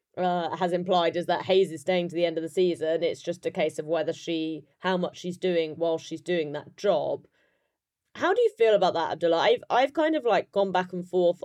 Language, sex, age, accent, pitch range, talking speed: English, female, 20-39, British, 160-190 Hz, 240 wpm